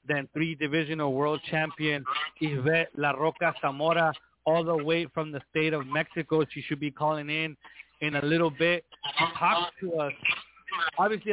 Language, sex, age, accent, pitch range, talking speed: English, male, 30-49, Mexican, 155-180 Hz, 160 wpm